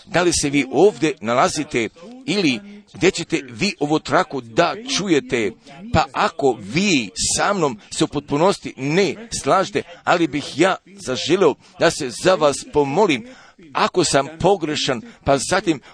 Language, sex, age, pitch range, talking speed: Croatian, male, 50-69, 140-190 Hz, 145 wpm